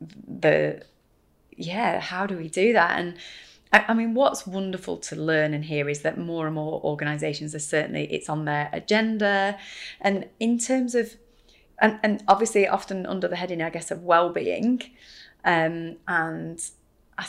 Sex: female